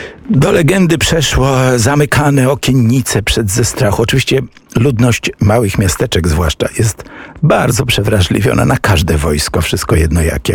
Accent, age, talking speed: native, 50-69, 125 wpm